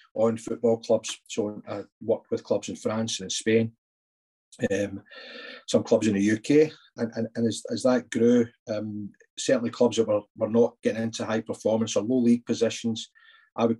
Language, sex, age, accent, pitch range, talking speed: English, male, 40-59, British, 110-125 Hz, 185 wpm